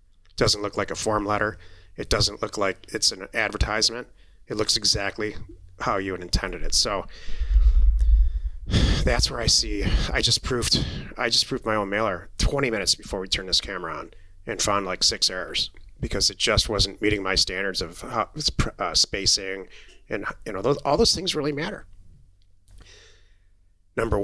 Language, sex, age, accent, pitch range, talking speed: English, male, 30-49, American, 90-110 Hz, 170 wpm